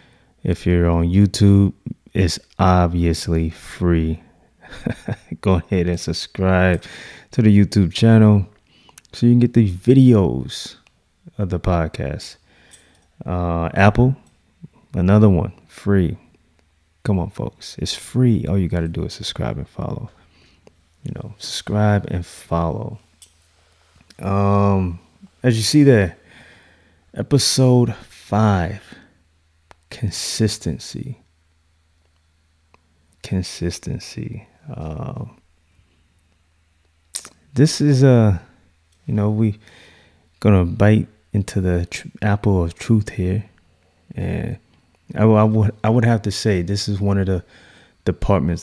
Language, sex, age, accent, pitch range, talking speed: English, male, 20-39, American, 85-105 Hz, 110 wpm